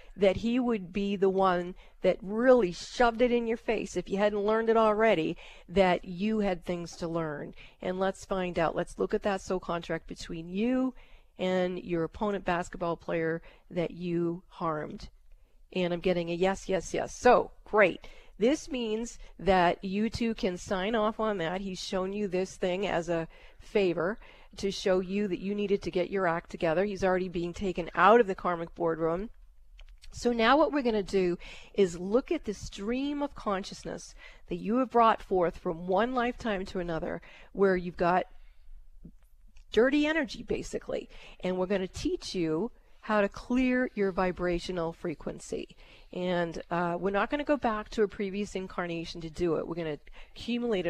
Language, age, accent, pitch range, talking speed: English, 40-59, American, 175-220 Hz, 180 wpm